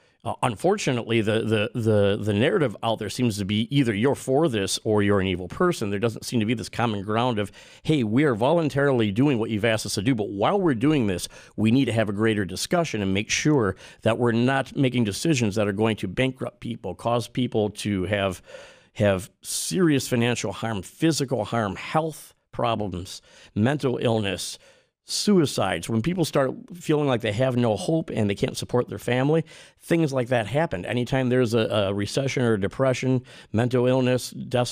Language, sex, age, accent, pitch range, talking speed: English, male, 50-69, American, 105-140 Hz, 195 wpm